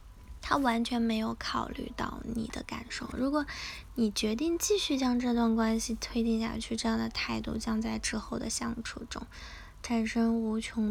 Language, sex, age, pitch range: Chinese, female, 10-29, 215-250 Hz